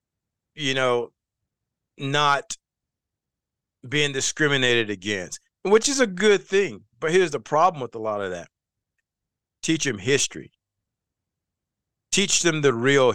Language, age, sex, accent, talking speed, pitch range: English, 50-69, male, American, 125 wpm, 110-155 Hz